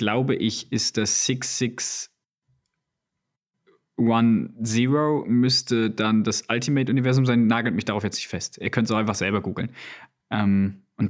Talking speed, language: 130 wpm, German